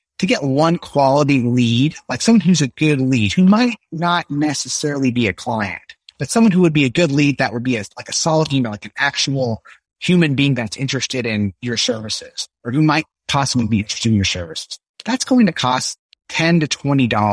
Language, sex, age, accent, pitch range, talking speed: English, male, 30-49, American, 115-155 Hz, 205 wpm